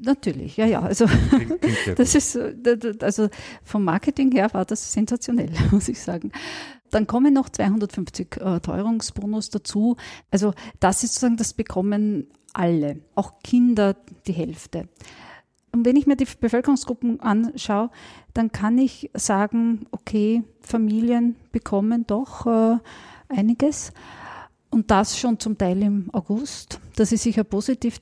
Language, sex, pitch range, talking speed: German, female, 185-230 Hz, 135 wpm